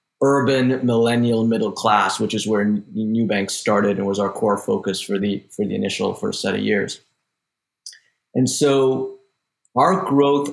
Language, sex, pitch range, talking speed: English, male, 110-130 Hz, 160 wpm